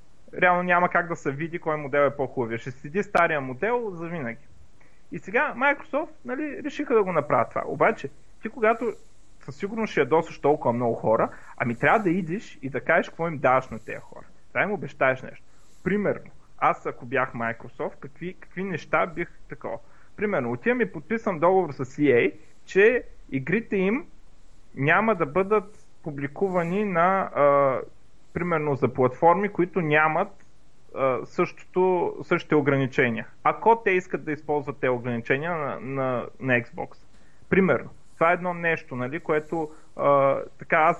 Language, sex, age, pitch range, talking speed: Bulgarian, male, 30-49, 135-195 Hz, 160 wpm